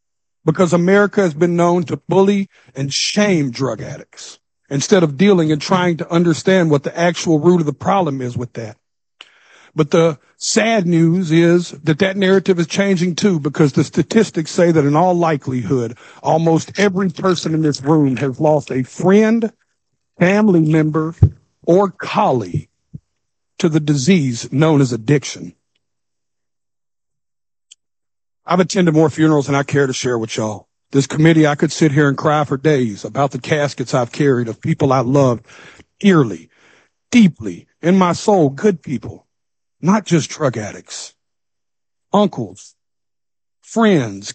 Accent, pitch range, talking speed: American, 140-185 Hz, 150 wpm